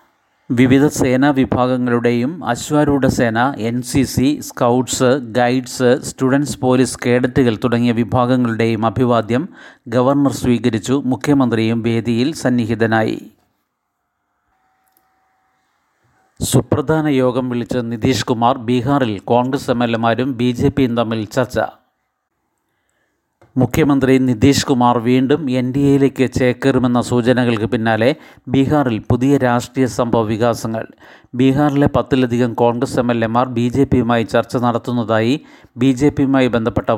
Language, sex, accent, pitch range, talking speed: Malayalam, male, native, 120-135 Hz, 95 wpm